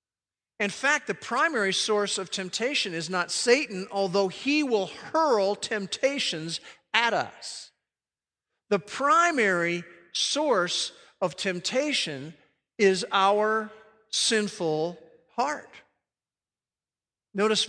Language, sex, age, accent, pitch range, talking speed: English, male, 50-69, American, 165-215 Hz, 90 wpm